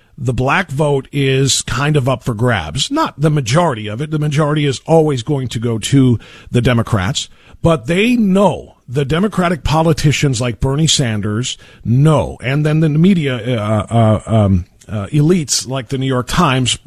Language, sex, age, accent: English, male, 50-69, American